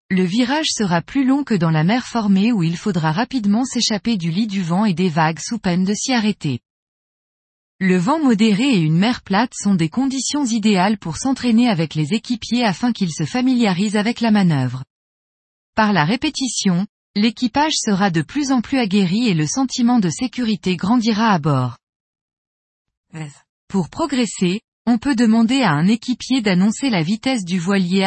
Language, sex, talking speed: French, female, 175 wpm